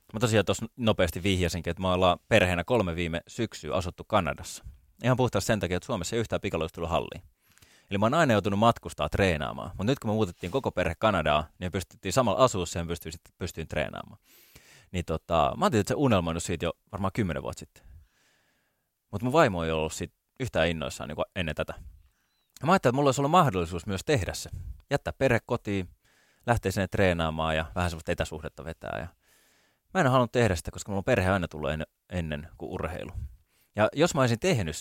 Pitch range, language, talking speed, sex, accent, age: 85-110 Hz, Finnish, 195 wpm, male, native, 20-39